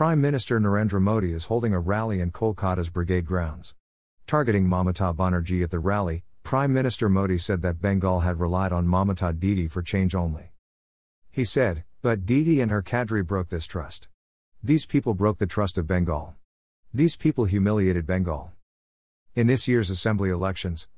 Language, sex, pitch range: English, male, 90-115 Hz